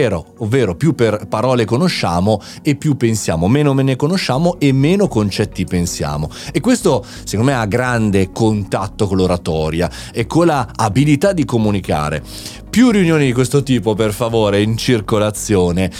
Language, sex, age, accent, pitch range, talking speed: Italian, male, 30-49, native, 105-155 Hz, 150 wpm